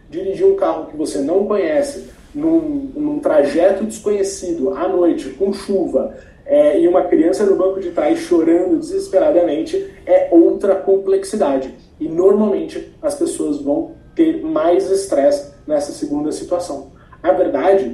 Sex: male